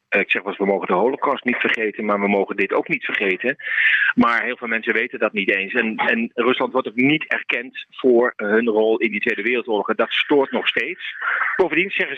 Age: 40-59